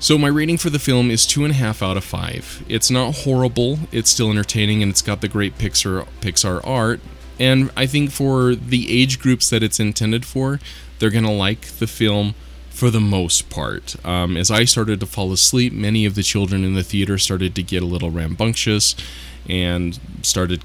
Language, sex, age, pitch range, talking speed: English, male, 20-39, 85-115 Hz, 205 wpm